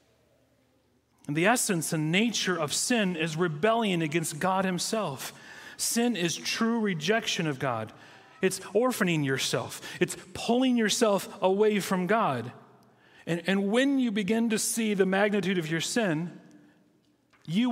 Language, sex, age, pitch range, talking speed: English, male, 40-59, 145-210 Hz, 130 wpm